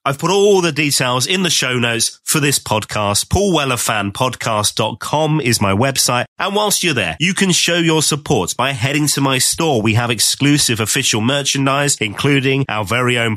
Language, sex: English, male